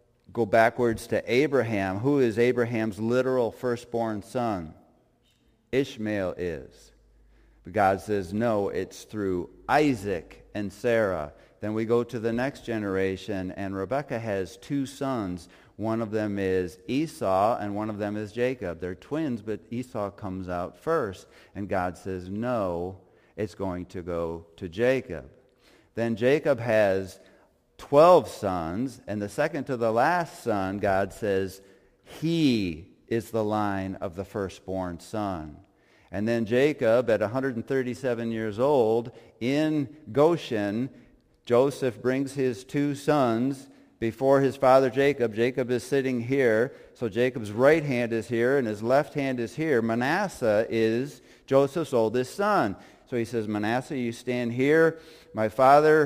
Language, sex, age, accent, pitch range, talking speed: English, male, 50-69, American, 100-130 Hz, 140 wpm